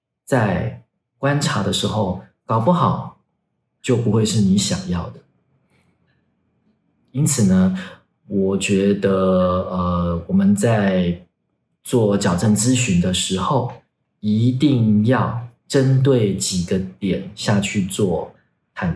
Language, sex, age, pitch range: Chinese, male, 40-59, 95-130 Hz